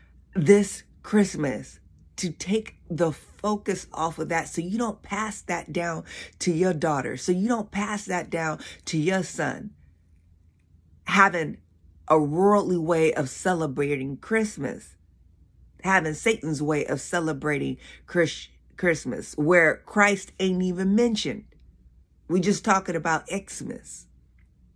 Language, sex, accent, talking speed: English, female, American, 125 wpm